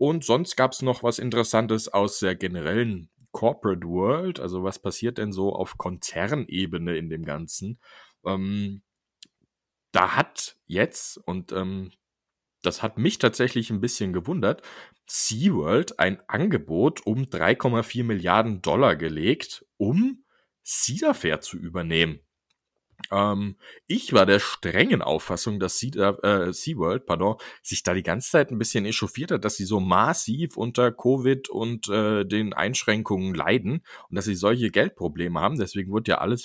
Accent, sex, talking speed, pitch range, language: German, male, 145 wpm, 90-115 Hz, German